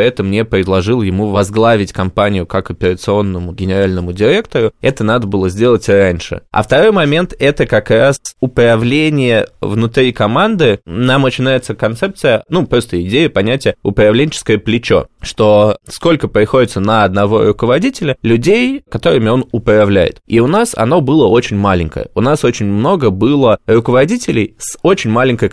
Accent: native